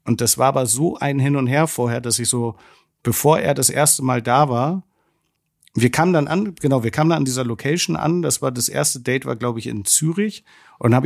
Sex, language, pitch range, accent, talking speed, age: male, German, 115-140 Hz, German, 235 wpm, 50-69